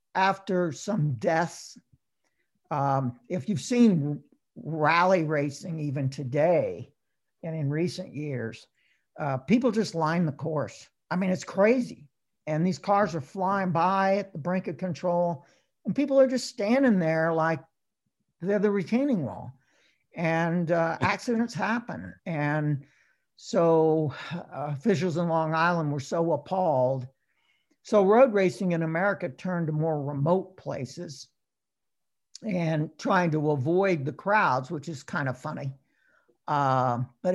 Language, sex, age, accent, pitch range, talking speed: English, male, 60-79, American, 140-185 Hz, 135 wpm